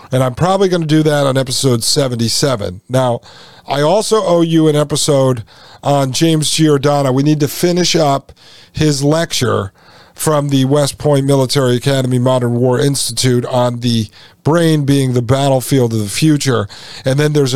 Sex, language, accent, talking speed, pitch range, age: male, English, American, 165 wpm, 125-150 Hz, 40-59